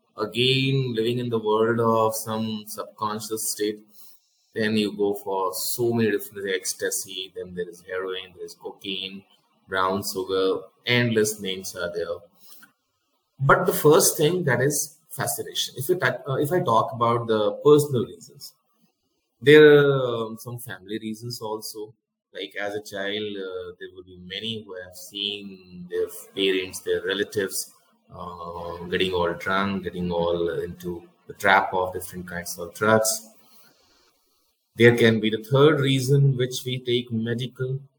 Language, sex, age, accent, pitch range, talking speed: Hindi, male, 20-39, native, 105-140 Hz, 150 wpm